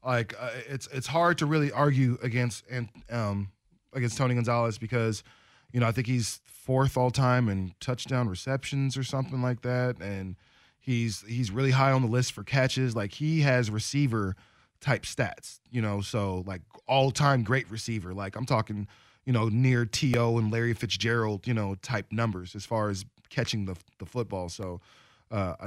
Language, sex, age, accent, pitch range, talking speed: English, male, 20-39, American, 105-130 Hz, 180 wpm